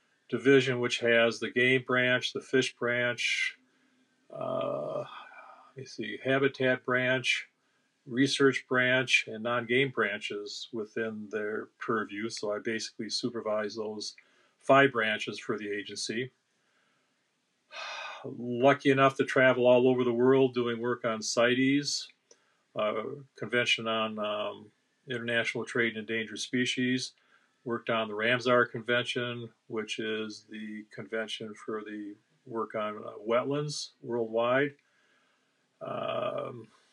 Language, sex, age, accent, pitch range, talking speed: English, male, 50-69, American, 115-135 Hz, 110 wpm